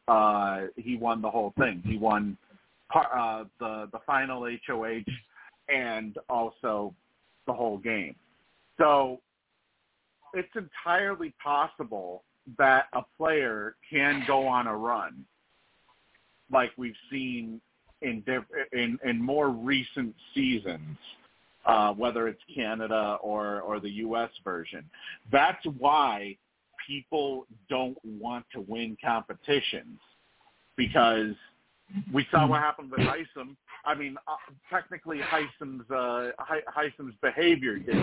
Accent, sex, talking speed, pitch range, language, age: American, male, 120 wpm, 110-150 Hz, English, 40-59